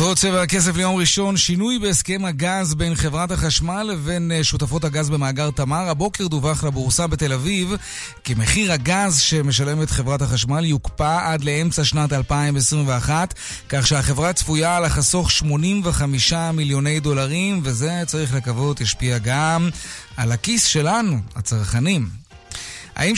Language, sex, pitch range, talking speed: Hebrew, male, 135-180 Hz, 125 wpm